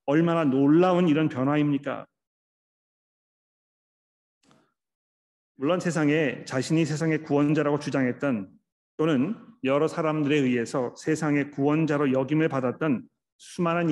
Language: Korean